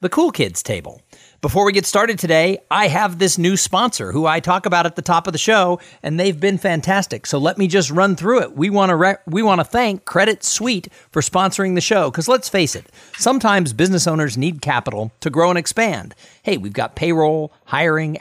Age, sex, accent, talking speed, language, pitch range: 50-69, male, American, 215 wpm, English, 145-195 Hz